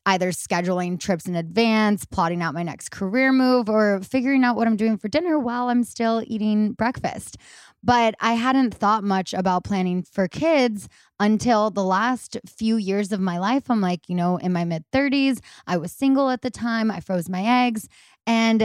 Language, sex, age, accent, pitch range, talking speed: English, female, 20-39, American, 185-230 Hz, 195 wpm